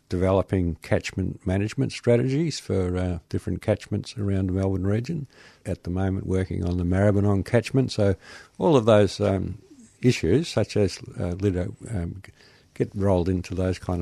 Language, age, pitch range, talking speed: English, 60-79, 95-115 Hz, 150 wpm